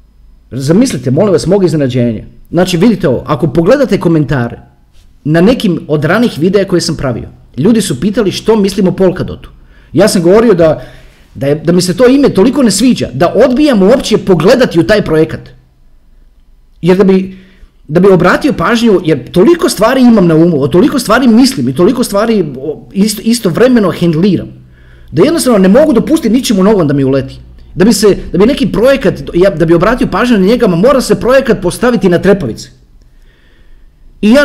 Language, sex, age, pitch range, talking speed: Croatian, male, 40-59, 165-265 Hz, 175 wpm